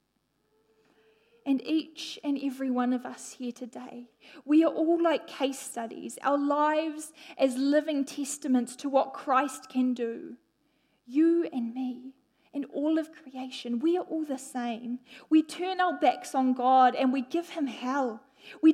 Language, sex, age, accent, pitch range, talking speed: English, female, 10-29, Australian, 255-315 Hz, 155 wpm